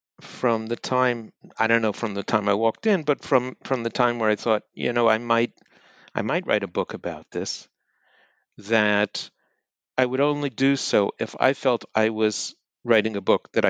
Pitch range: 100-120 Hz